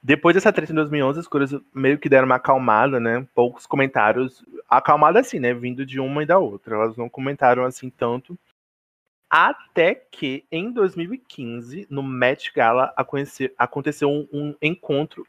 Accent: Brazilian